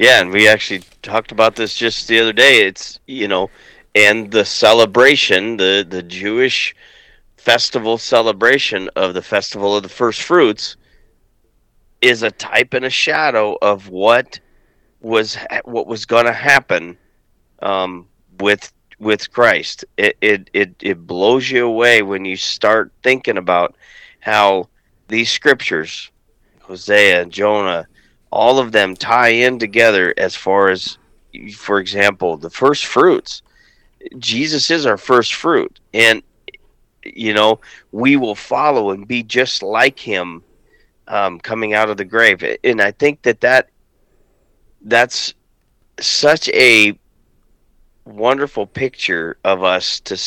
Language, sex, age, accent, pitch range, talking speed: English, male, 40-59, American, 95-120 Hz, 135 wpm